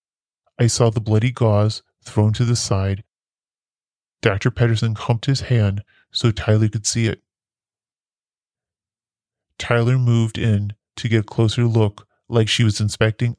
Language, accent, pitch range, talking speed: English, American, 105-120 Hz, 140 wpm